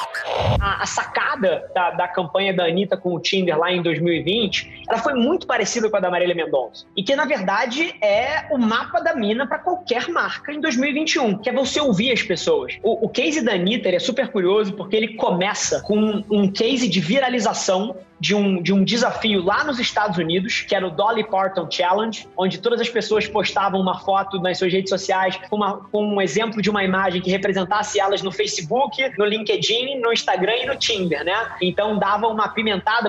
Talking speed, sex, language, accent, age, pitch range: 195 wpm, male, Portuguese, Brazilian, 20-39, 190-250 Hz